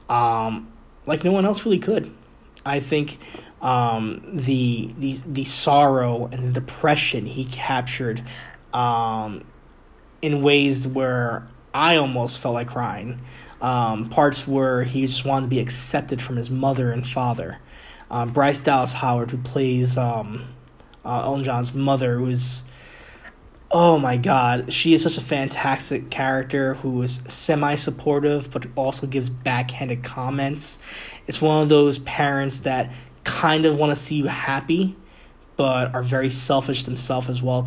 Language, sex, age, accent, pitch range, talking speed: English, male, 20-39, American, 120-140 Hz, 145 wpm